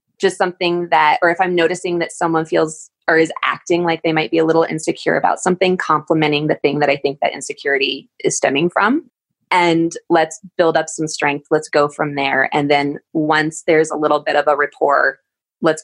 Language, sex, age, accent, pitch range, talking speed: English, female, 20-39, American, 155-210 Hz, 205 wpm